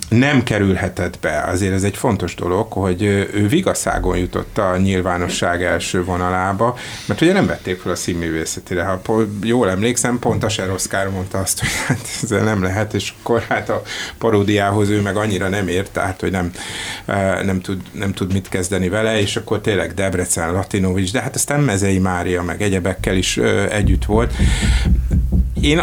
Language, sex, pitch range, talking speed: Hungarian, male, 90-115 Hz, 170 wpm